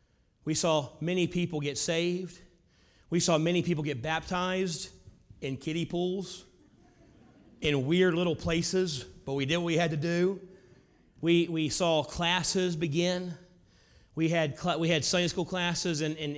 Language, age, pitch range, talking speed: English, 30-49, 160-195 Hz, 150 wpm